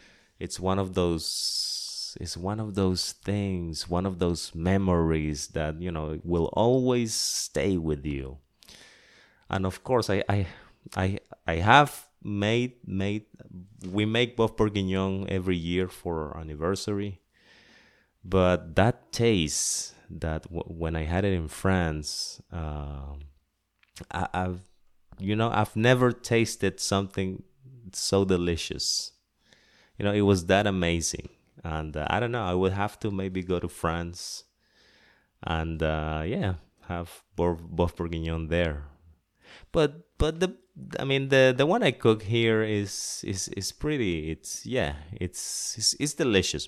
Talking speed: 140 wpm